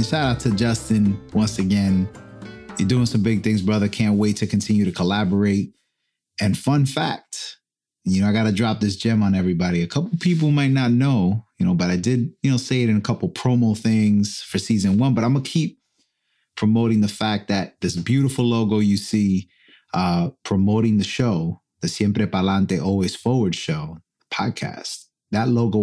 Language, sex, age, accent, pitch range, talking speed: English, male, 30-49, American, 95-115 Hz, 190 wpm